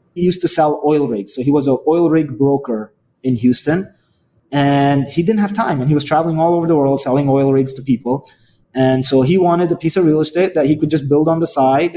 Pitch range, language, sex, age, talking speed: 135-175 Hz, English, male, 20-39, 250 wpm